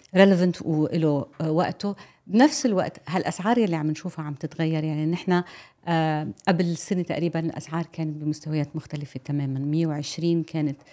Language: Arabic